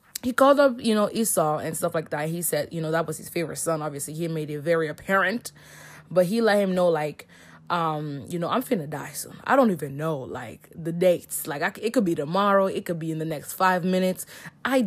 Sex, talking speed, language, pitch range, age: female, 240 wpm, English, 155-200 Hz, 20-39